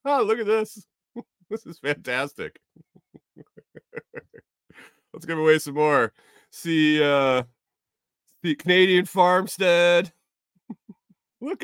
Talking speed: 95 wpm